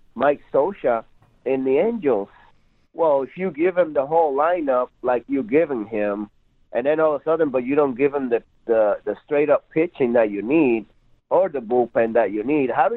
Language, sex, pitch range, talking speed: English, male, 130-190 Hz, 205 wpm